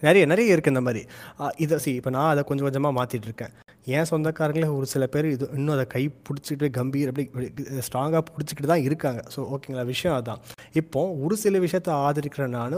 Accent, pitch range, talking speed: native, 125-150 Hz, 185 wpm